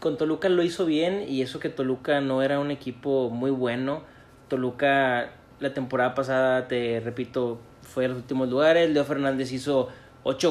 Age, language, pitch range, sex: 30-49, Spanish, 135-175 Hz, male